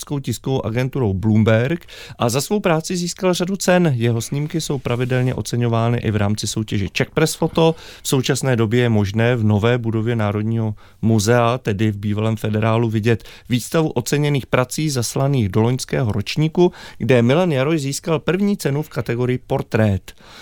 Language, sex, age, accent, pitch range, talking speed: Czech, male, 30-49, native, 110-135 Hz, 155 wpm